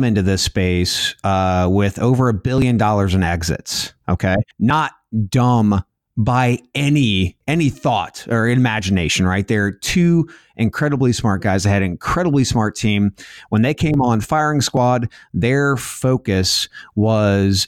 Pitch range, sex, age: 100-125 Hz, male, 30-49